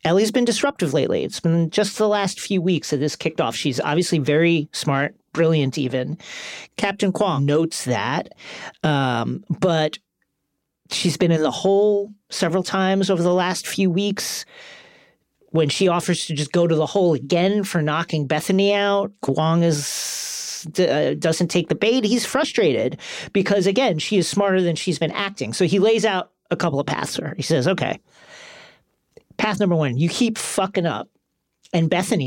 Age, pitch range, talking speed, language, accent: 40-59, 155-200 Hz, 165 wpm, English, American